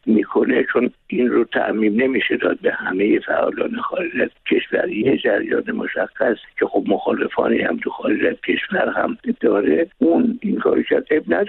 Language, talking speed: Persian, 145 wpm